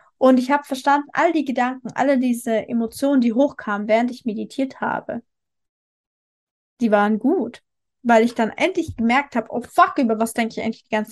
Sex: female